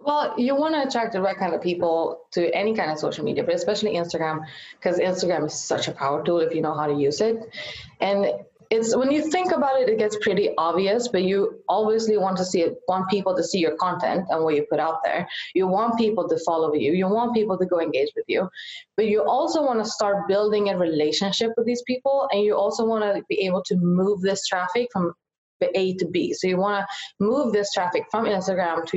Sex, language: female, English